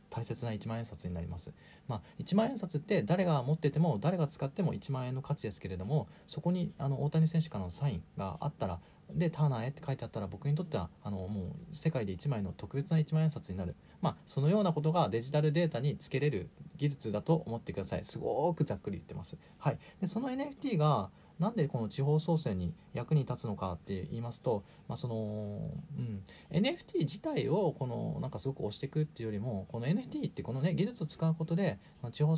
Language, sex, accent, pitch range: Japanese, male, native, 115-170 Hz